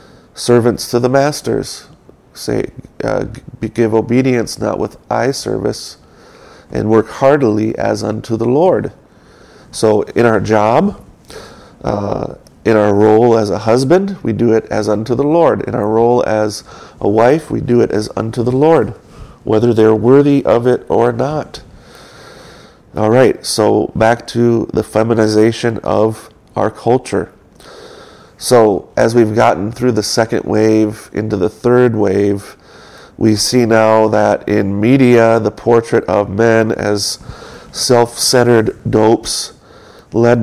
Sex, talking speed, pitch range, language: male, 140 wpm, 105-120 Hz, English